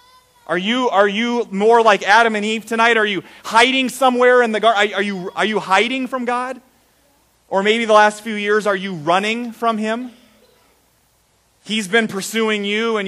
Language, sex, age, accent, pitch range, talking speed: English, male, 30-49, American, 185-240 Hz, 180 wpm